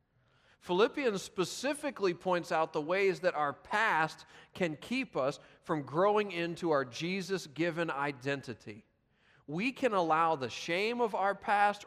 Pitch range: 140-190 Hz